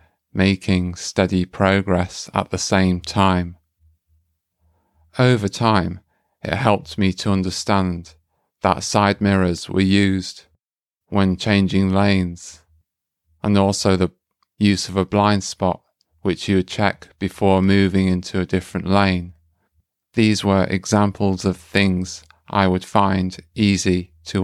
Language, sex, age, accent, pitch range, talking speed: English, male, 30-49, British, 90-100 Hz, 125 wpm